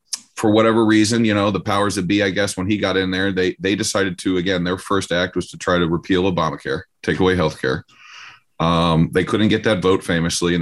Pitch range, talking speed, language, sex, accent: 90-105 Hz, 235 wpm, English, male, American